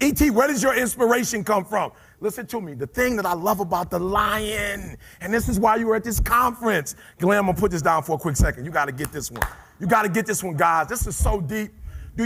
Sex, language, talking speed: male, English, 275 wpm